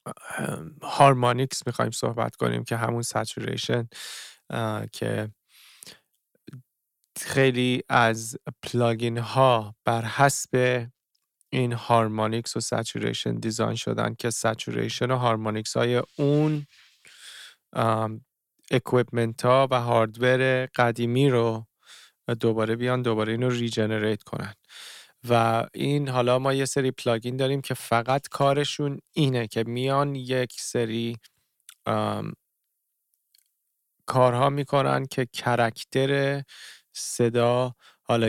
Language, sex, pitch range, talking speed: Persian, male, 115-130 Hz, 95 wpm